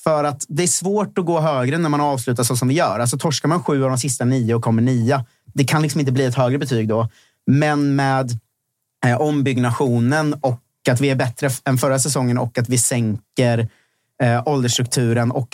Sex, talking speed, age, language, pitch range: male, 210 wpm, 30-49, Swedish, 115-140 Hz